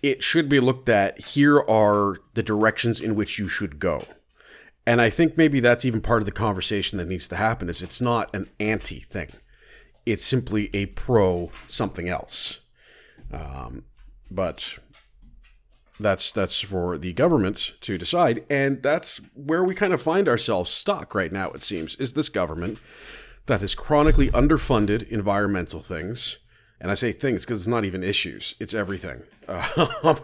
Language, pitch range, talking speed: English, 90-120 Hz, 160 wpm